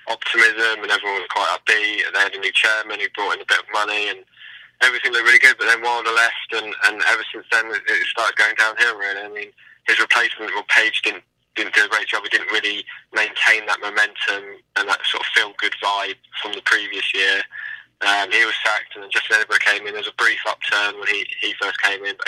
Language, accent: English, British